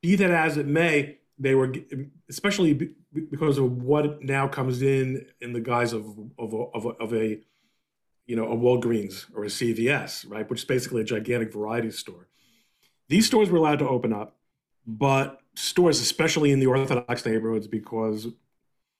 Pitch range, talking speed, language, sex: 115-145 Hz, 170 wpm, English, male